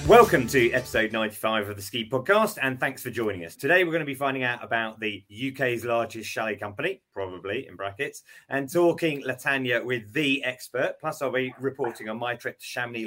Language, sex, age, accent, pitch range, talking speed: English, male, 30-49, British, 110-140 Hz, 200 wpm